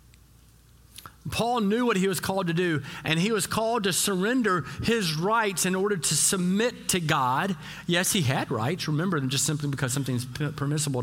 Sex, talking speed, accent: male, 175 wpm, American